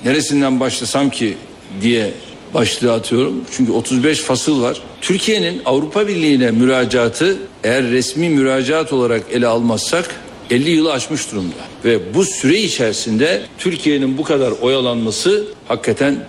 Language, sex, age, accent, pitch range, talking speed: Turkish, male, 60-79, native, 140-190 Hz, 120 wpm